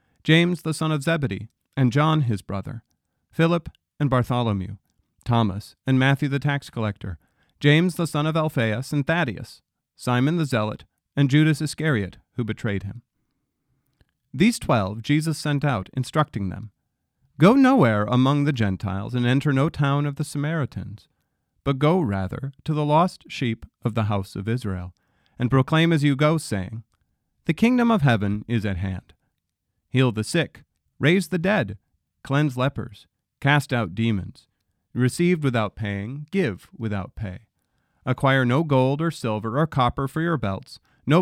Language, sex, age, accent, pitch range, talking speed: English, male, 40-59, American, 105-155 Hz, 155 wpm